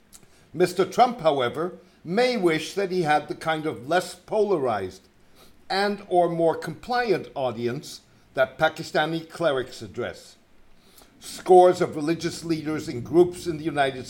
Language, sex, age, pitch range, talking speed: English, male, 60-79, 140-180 Hz, 130 wpm